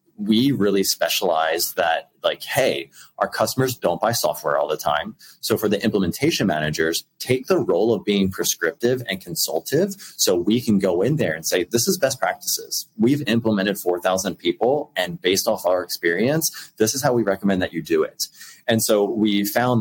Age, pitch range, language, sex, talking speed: 30-49, 90-130 Hz, English, male, 185 wpm